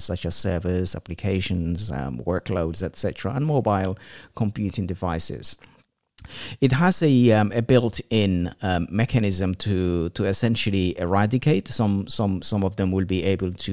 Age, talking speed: 50-69, 140 wpm